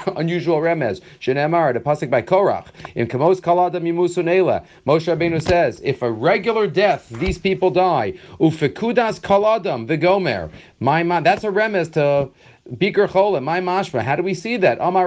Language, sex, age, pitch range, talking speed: English, male, 40-59, 150-195 Hz, 165 wpm